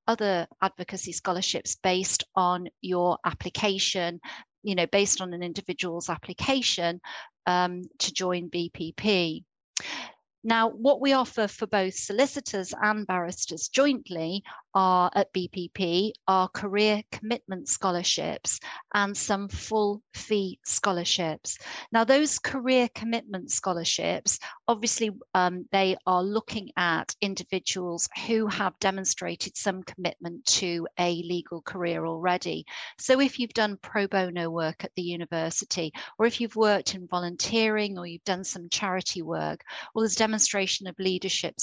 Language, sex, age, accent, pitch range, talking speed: English, female, 40-59, British, 180-215 Hz, 130 wpm